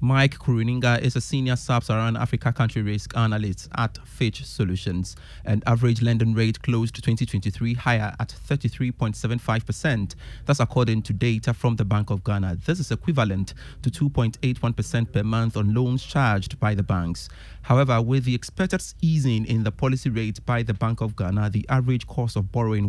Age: 30-49